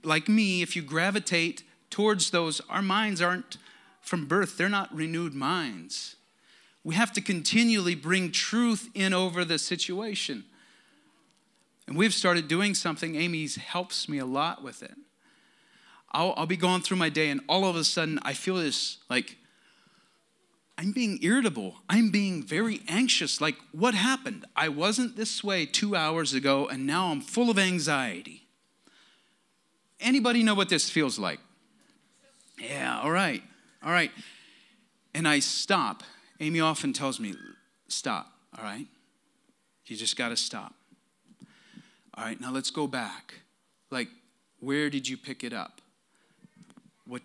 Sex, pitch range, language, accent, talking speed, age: male, 150-210 Hz, English, American, 150 wpm, 30-49